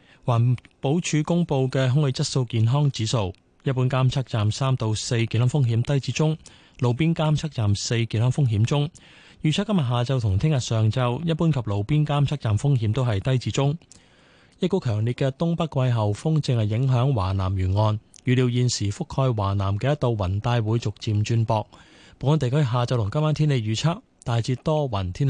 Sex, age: male, 20-39